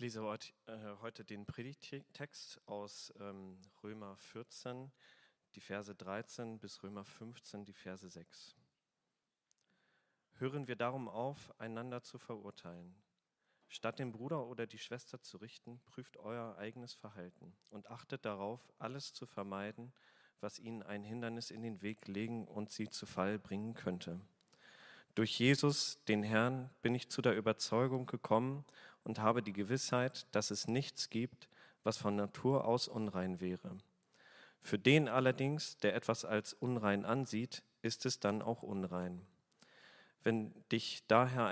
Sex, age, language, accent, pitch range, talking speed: male, 40-59, German, German, 105-125 Hz, 140 wpm